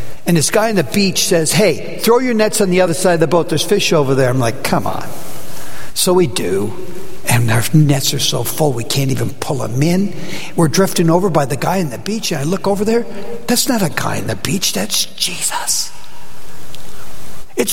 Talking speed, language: 220 wpm, English